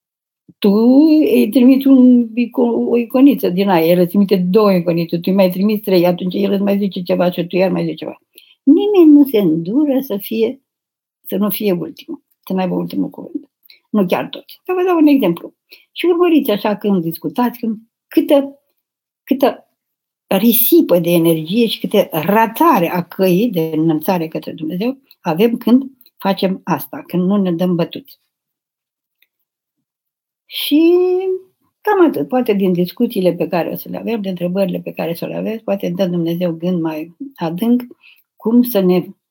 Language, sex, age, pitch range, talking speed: Romanian, female, 60-79, 175-260 Hz, 165 wpm